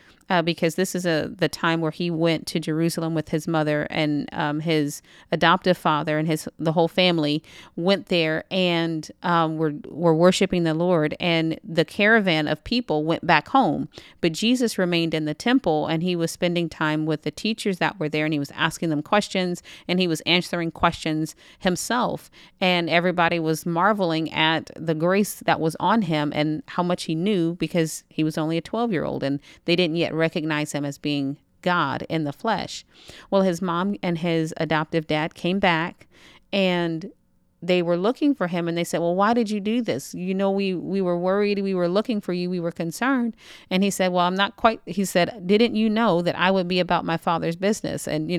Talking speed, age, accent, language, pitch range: 205 wpm, 40-59, American, English, 160-195 Hz